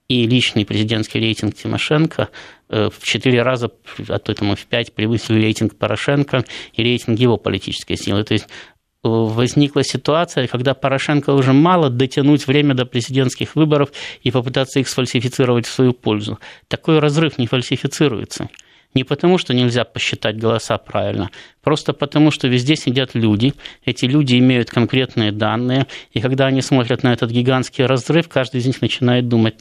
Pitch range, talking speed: 120-150 Hz, 150 wpm